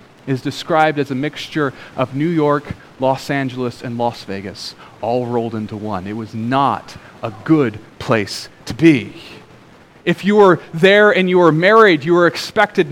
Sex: male